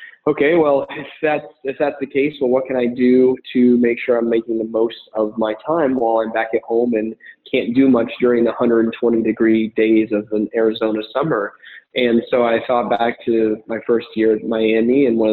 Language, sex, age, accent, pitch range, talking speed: English, male, 20-39, American, 110-120 Hz, 210 wpm